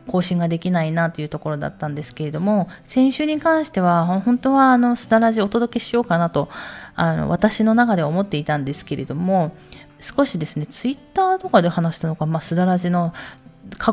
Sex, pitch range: female, 155-210 Hz